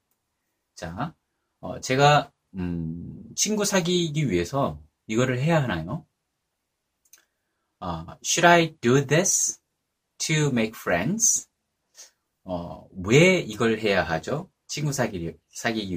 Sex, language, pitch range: male, Korean, 90-150 Hz